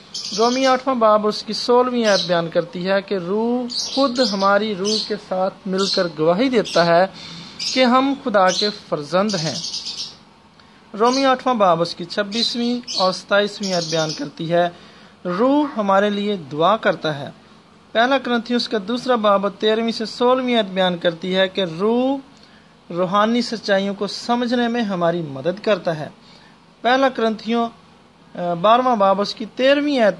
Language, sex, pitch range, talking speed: English, male, 185-225 Hz, 125 wpm